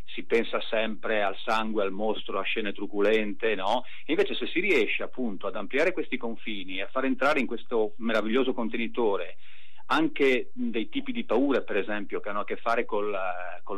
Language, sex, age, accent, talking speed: Italian, male, 40-59, native, 185 wpm